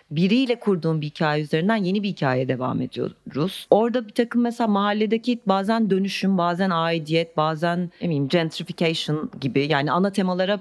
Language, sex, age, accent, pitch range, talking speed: Turkish, female, 40-59, native, 155-215 Hz, 155 wpm